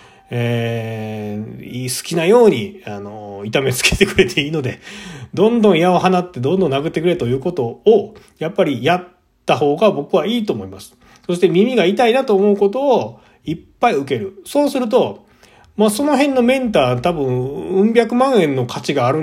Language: Japanese